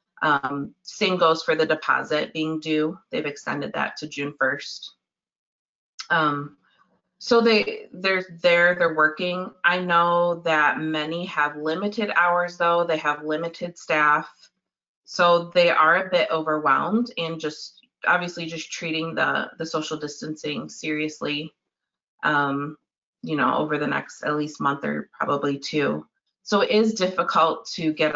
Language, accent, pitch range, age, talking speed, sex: English, American, 150-180 Hz, 30-49, 145 wpm, female